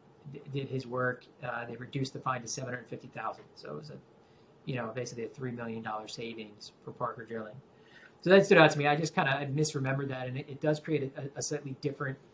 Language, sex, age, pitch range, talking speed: English, male, 30-49, 125-145 Hz, 240 wpm